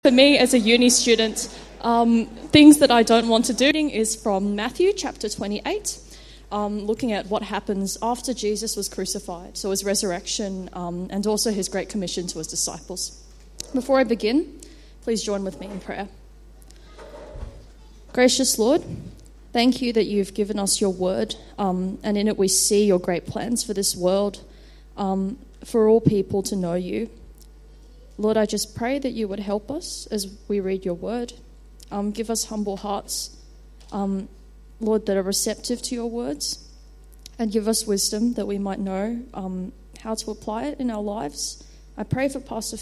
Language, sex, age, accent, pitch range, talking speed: English, female, 20-39, Australian, 195-235 Hz, 175 wpm